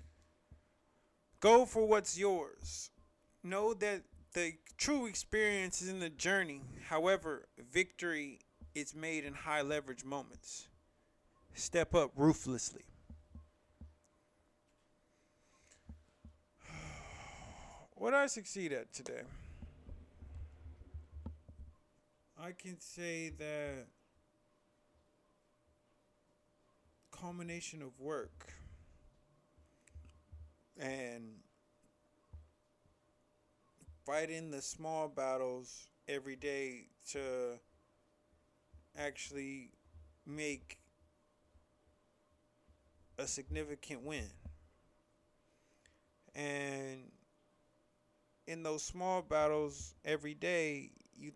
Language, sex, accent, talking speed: English, male, American, 65 wpm